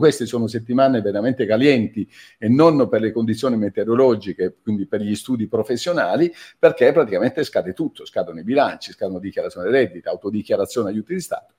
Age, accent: 50-69, native